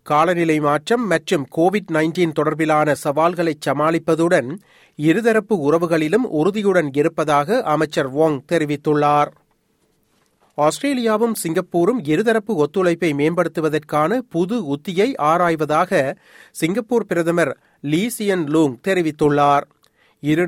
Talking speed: 80 wpm